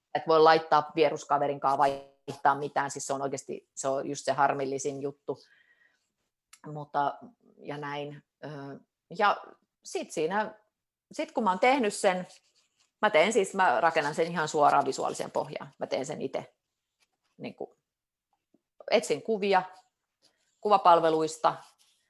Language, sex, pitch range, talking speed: Finnish, female, 145-190 Hz, 115 wpm